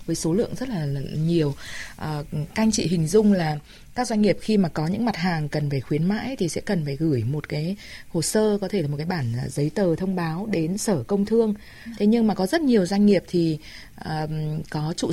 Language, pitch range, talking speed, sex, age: Vietnamese, 165-215 Hz, 235 wpm, female, 20-39